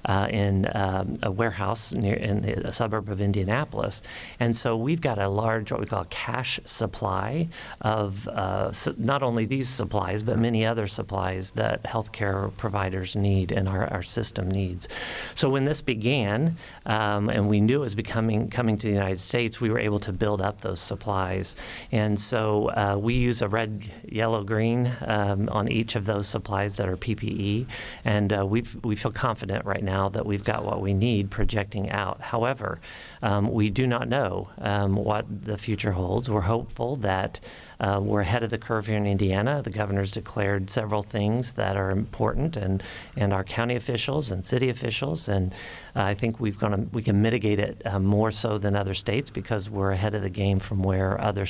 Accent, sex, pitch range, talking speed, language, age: American, male, 100-115 Hz, 190 wpm, English, 40-59